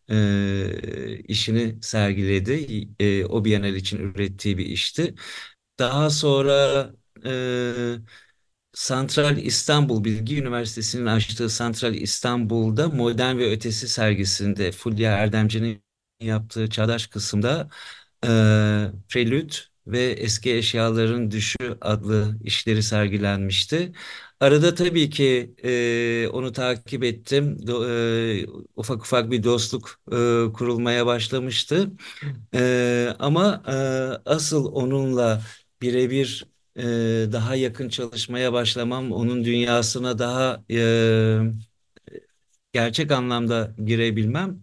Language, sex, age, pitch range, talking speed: Turkish, male, 50-69, 110-130 Hz, 95 wpm